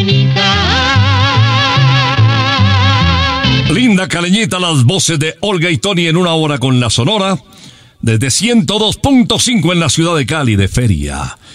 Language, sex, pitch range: Spanish, male, 105-155 Hz